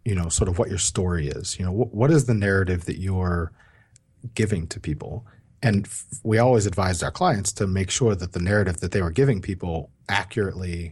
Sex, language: male, English